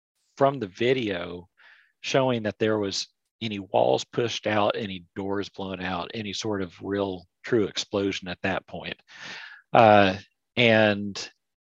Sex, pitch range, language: male, 95-115 Hz, English